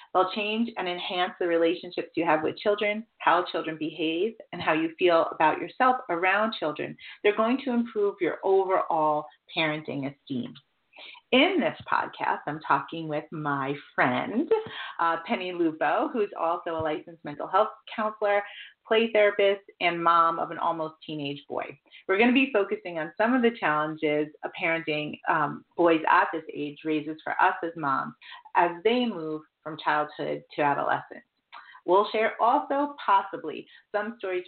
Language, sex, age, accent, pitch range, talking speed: English, female, 40-59, American, 150-205 Hz, 160 wpm